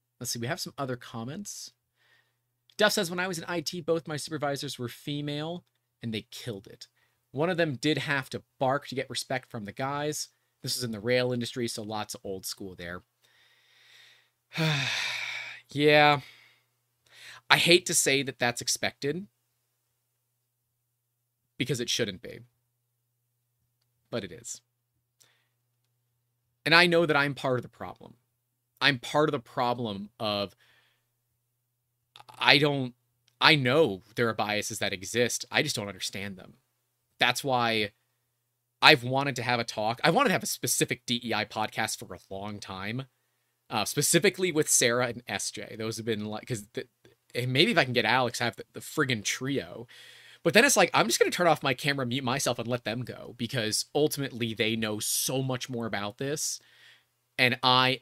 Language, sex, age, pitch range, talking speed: English, male, 30-49, 115-135 Hz, 170 wpm